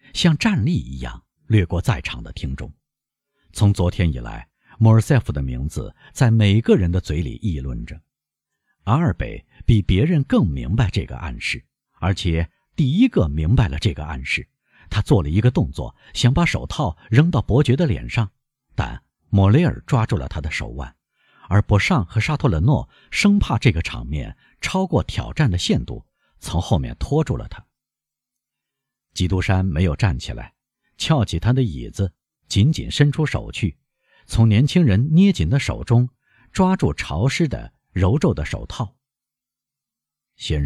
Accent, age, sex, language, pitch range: native, 50-69, male, Chinese, 80-125 Hz